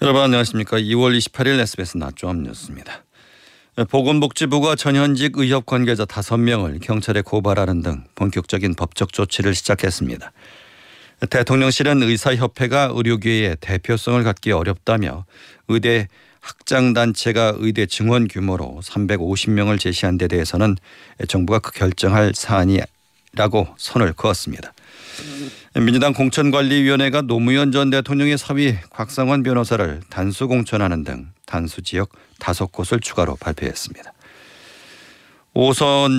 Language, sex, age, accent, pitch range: Korean, male, 40-59, native, 95-125 Hz